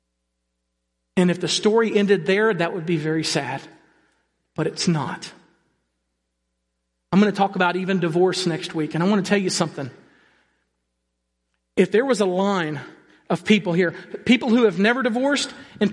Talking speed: 165 wpm